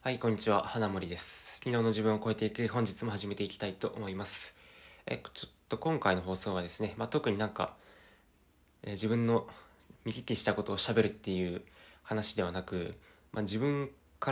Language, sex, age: Japanese, male, 20-39